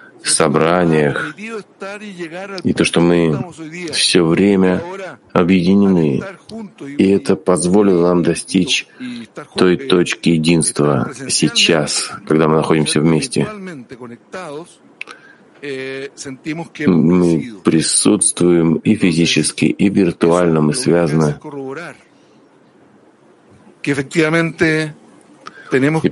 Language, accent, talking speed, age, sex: Russian, native, 70 wpm, 40-59, male